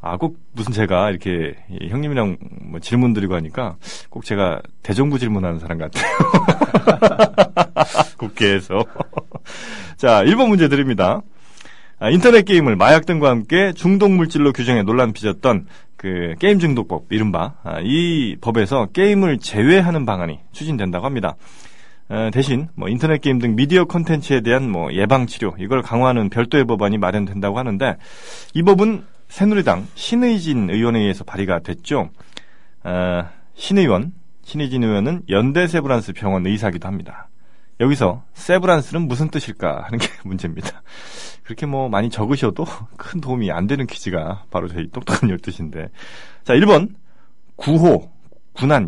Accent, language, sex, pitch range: native, Korean, male, 100-160 Hz